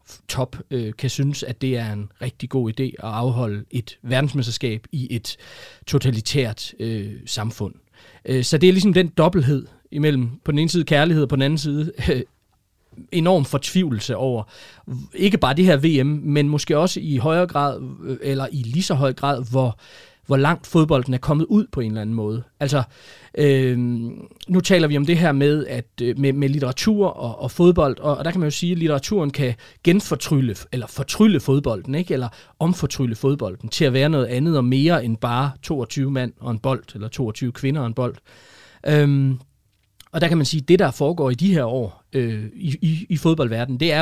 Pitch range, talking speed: 120-150 Hz, 195 wpm